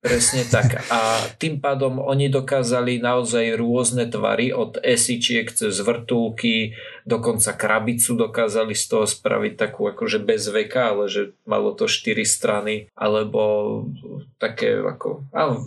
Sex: male